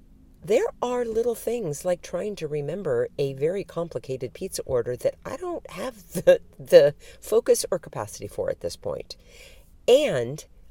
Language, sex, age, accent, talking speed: English, female, 50-69, American, 150 wpm